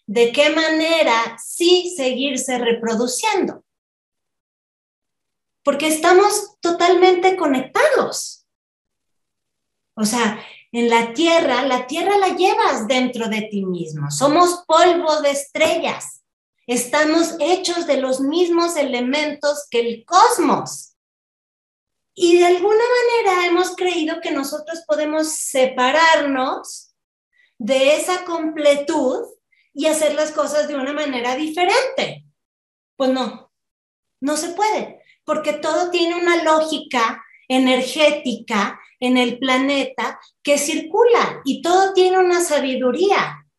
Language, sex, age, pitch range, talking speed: Spanish, female, 30-49, 250-340 Hz, 105 wpm